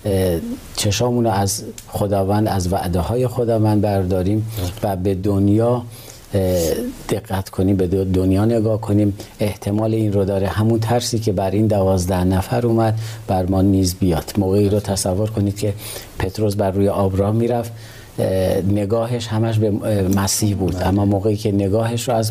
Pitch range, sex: 95-115 Hz, male